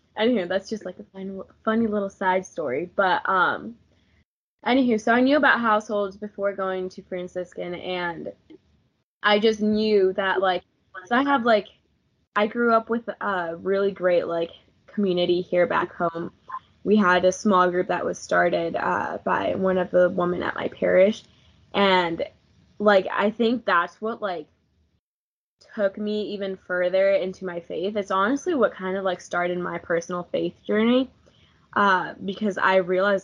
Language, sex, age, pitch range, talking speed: English, female, 10-29, 180-210 Hz, 160 wpm